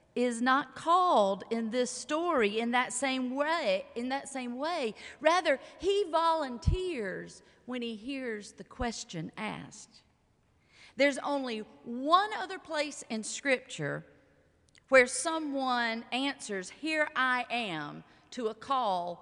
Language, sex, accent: English, female, American